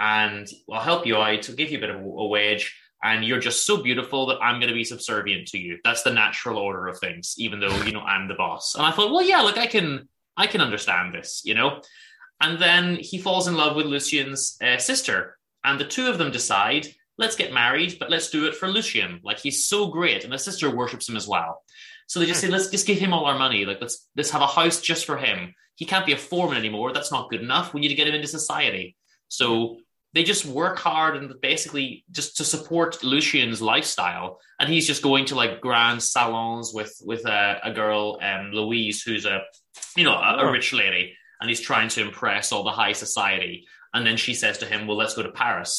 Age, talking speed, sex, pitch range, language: 20-39, 240 wpm, male, 115-170 Hz, English